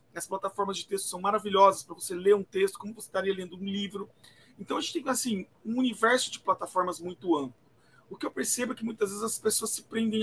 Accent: Brazilian